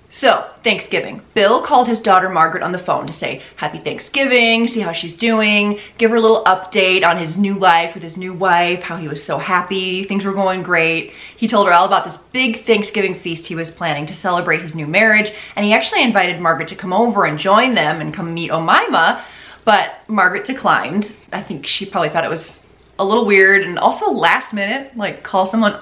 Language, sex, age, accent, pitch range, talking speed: English, female, 20-39, American, 170-220 Hz, 215 wpm